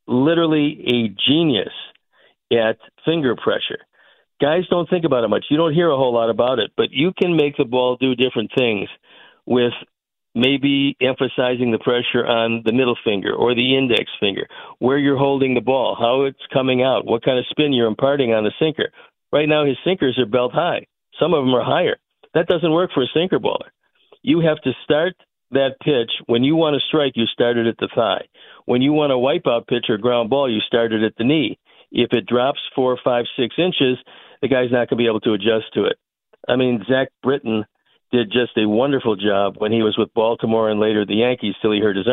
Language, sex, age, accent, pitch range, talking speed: English, male, 50-69, American, 115-140 Hz, 215 wpm